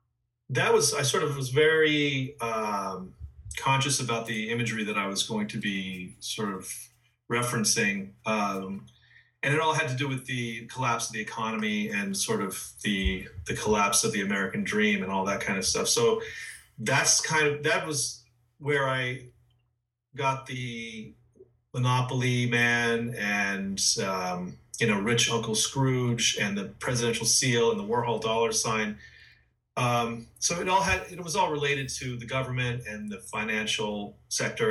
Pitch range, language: 110-135 Hz, English